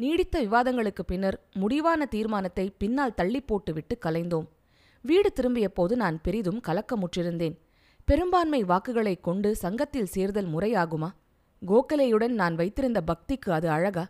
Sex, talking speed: female, 115 wpm